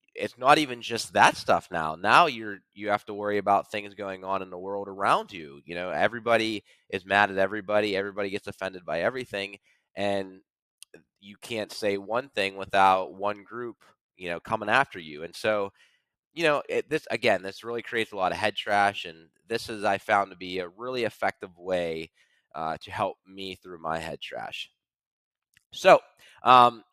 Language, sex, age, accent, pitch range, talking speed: English, male, 20-39, American, 95-115 Hz, 185 wpm